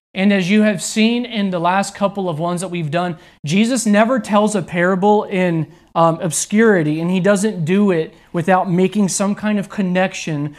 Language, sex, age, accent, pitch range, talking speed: English, male, 30-49, American, 165-215 Hz, 185 wpm